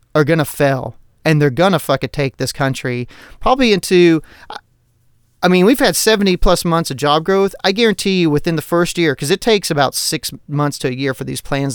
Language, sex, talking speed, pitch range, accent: English, male, 220 wpm, 130-165 Hz, American